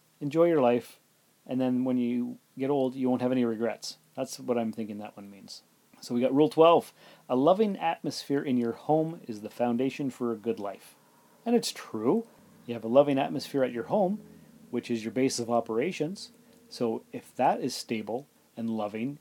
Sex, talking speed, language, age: male, 195 wpm, English, 30-49